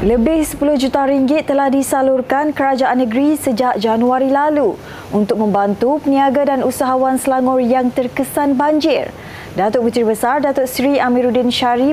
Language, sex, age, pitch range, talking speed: Malay, female, 20-39, 245-285 Hz, 135 wpm